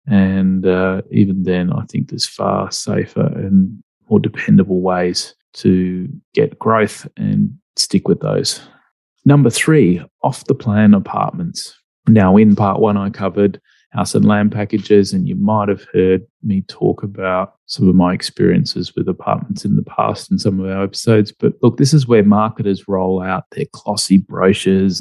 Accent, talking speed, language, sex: Australian, 165 wpm, English, male